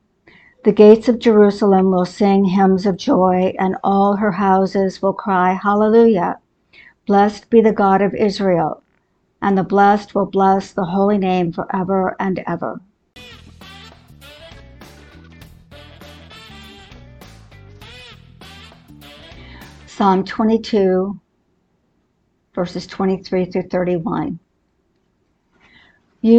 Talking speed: 75 wpm